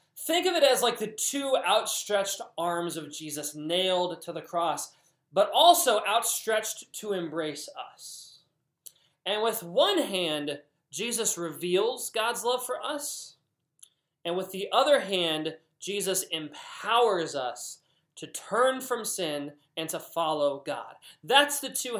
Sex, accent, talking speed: male, American, 135 wpm